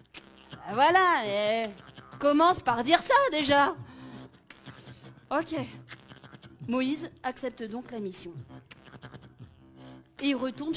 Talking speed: 90 wpm